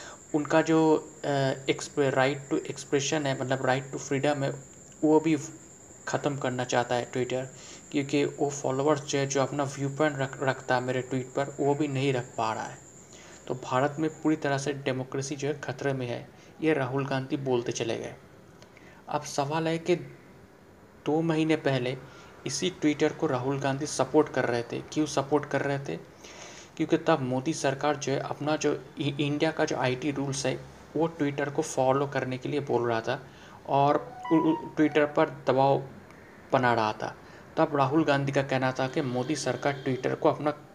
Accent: native